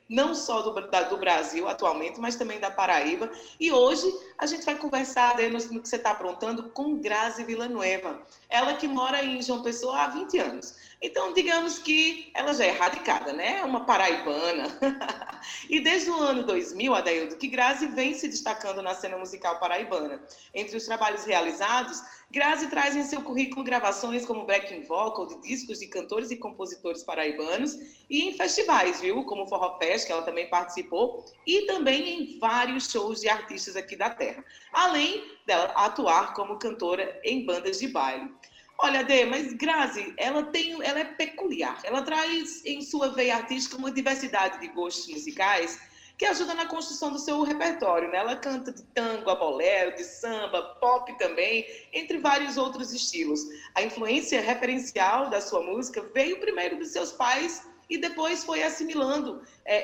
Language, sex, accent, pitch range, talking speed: Portuguese, female, Brazilian, 210-300 Hz, 170 wpm